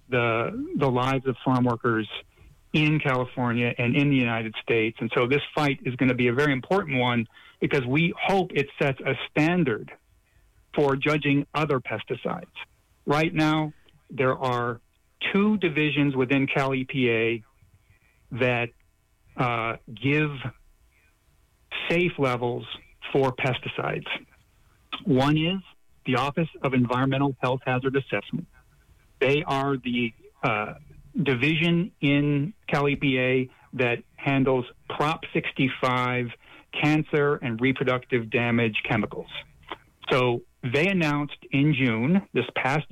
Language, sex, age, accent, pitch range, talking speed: English, male, 50-69, American, 125-150 Hz, 120 wpm